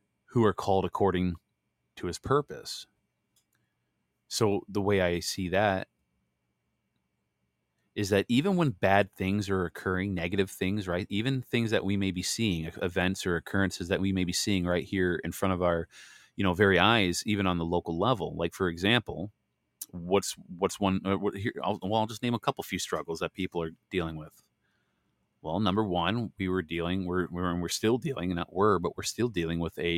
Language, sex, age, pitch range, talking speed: English, male, 30-49, 85-105 Hz, 190 wpm